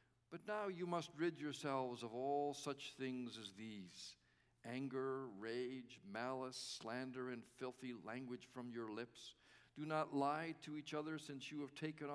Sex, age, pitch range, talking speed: male, 50-69, 125-155 Hz, 160 wpm